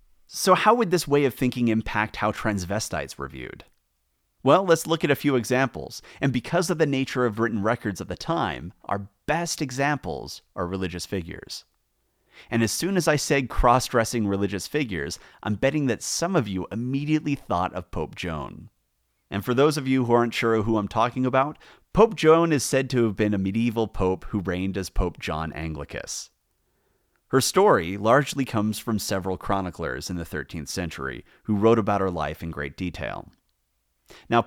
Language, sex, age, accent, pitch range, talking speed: English, male, 30-49, American, 90-135 Hz, 180 wpm